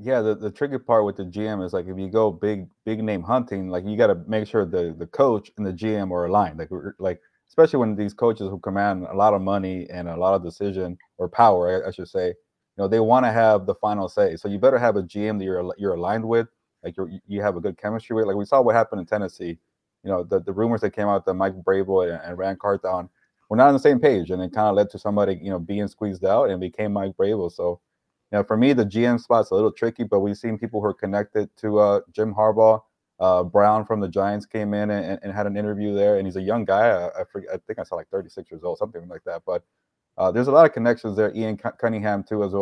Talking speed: 275 wpm